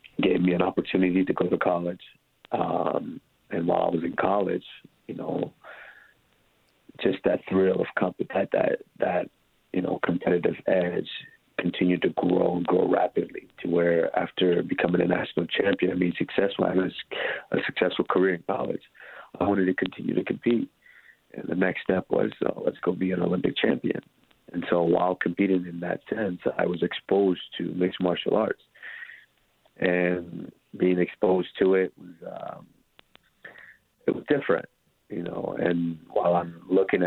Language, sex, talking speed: English, male, 165 wpm